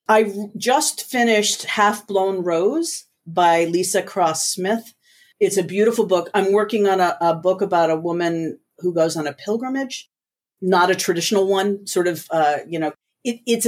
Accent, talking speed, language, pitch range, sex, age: American, 165 wpm, English, 160-200 Hz, female, 40-59